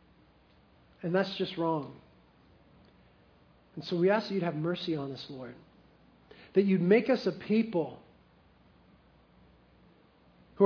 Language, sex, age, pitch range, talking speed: English, male, 40-59, 155-195 Hz, 125 wpm